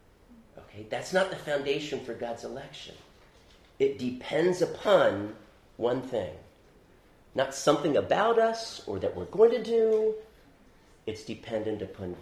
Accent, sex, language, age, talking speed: American, male, English, 40-59, 125 wpm